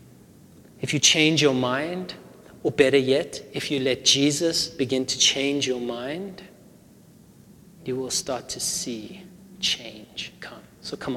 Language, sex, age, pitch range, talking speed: English, male, 30-49, 130-160 Hz, 140 wpm